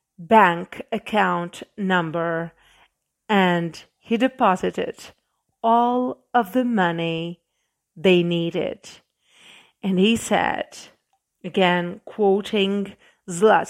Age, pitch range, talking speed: 40-59, 175-230 Hz, 75 wpm